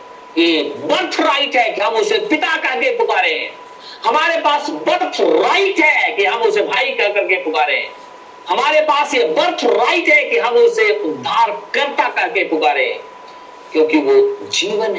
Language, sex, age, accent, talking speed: Hindi, male, 50-69, native, 155 wpm